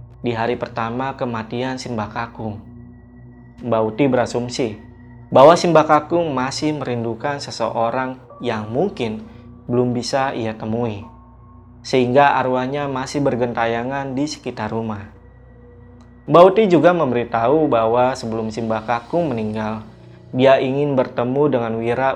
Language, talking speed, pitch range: Indonesian, 100 wpm, 115-140 Hz